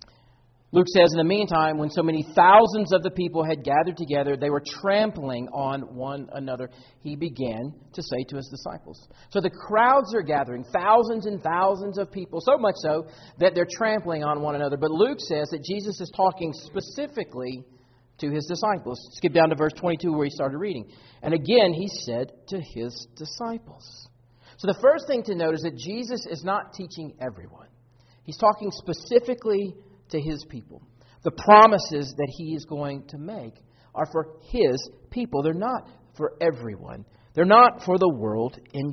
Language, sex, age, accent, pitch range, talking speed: English, male, 40-59, American, 125-200 Hz, 180 wpm